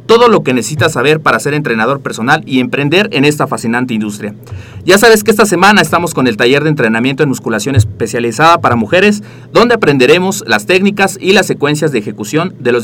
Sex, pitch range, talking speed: male, 120-180 Hz, 195 wpm